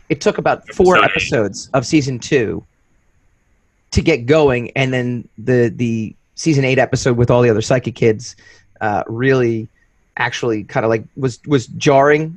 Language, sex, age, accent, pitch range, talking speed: English, male, 30-49, American, 120-155 Hz, 160 wpm